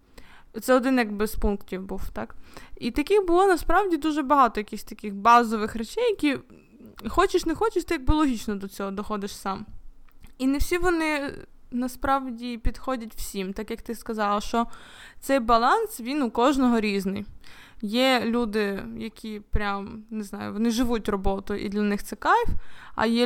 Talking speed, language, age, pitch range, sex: 160 wpm, Ukrainian, 20-39, 210-260 Hz, female